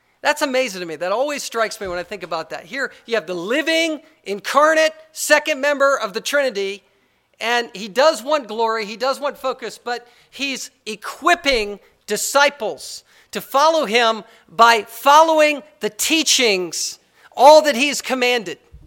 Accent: American